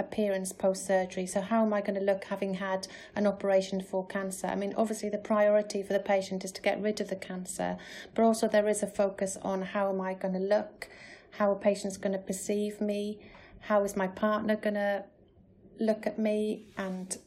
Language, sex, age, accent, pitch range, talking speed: English, female, 30-49, British, 195-210 Hz, 210 wpm